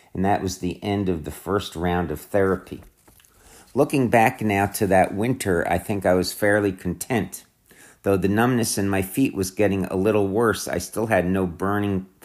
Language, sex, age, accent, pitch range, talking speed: English, male, 50-69, American, 90-110 Hz, 190 wpm